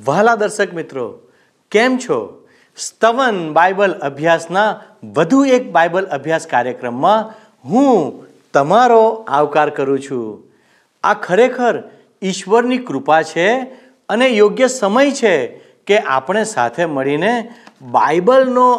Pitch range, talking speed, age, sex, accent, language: 150-235 Hz, 100 wpm, 50-69, male, native, Gujarati